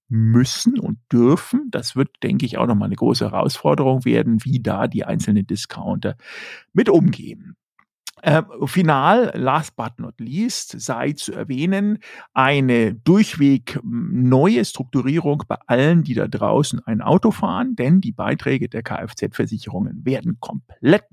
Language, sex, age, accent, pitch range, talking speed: German, male, 50-69, German, 120-175 Hz, 135 wpm